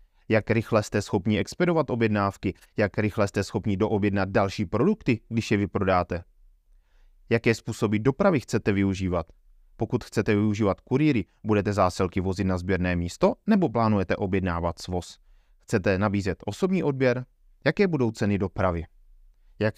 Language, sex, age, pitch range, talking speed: Czech, male, 20-39, 95-125 Hz, 135 wpm